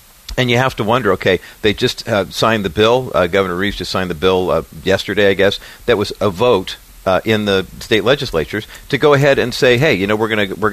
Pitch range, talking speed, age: 105-140 Hz, 240 wpm, 50-69